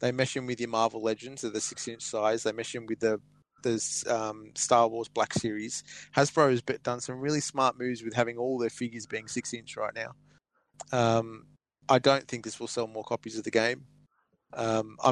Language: English